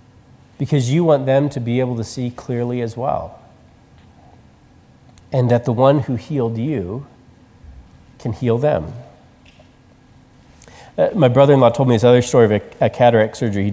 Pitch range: 115-140 Hz